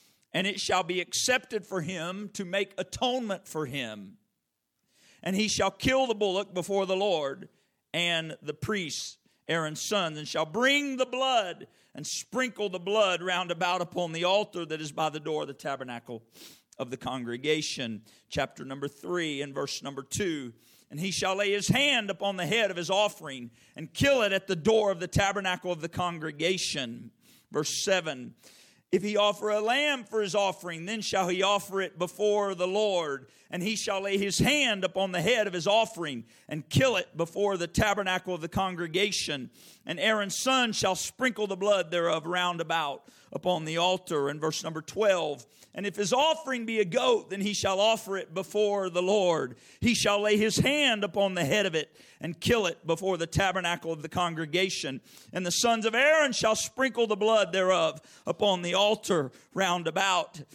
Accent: American